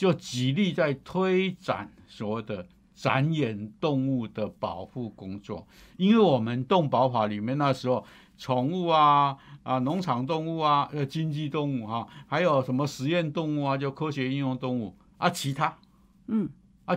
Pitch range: 115-165 Hz